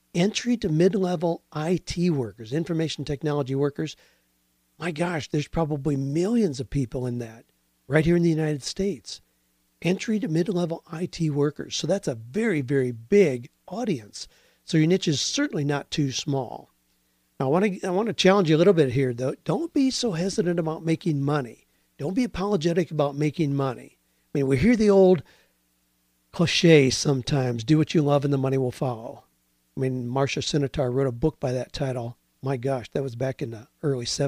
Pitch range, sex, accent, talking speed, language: 125-170 Hz, male, American, 180 wpm, English